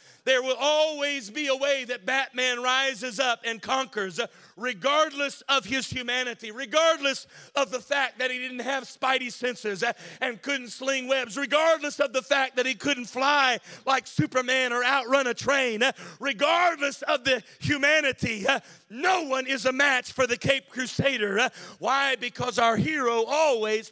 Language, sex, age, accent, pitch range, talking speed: English, male, 40-59, American, 235-270 Hz, 155 wpm